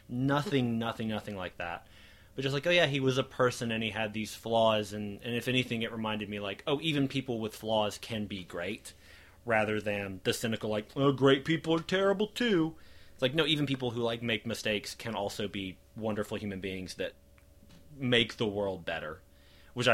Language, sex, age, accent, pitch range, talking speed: English, male, 30-49, American, 95-120 Hz, 200 wpm